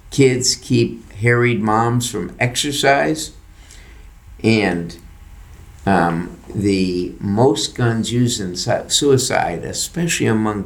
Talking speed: 90 wpm